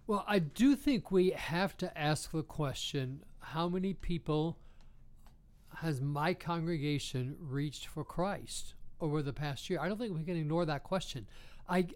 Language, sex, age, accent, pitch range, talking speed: English, male, 60-79, American, 150-180 Hz, 160 wpm